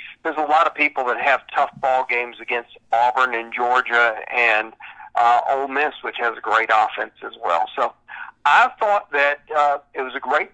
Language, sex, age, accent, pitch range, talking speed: English, male, 50-69, American, 130-170 Hz, 195 wpm